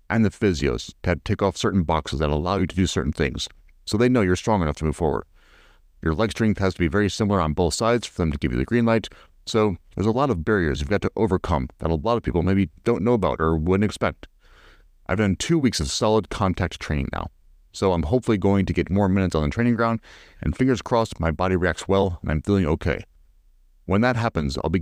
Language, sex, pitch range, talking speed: English, male, 80-110 Hz, 245 wpm